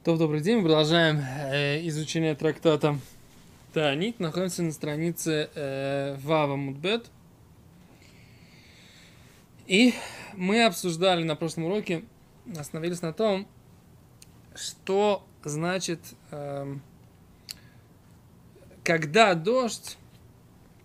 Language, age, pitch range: Russian, 20-39, 145-180 Hz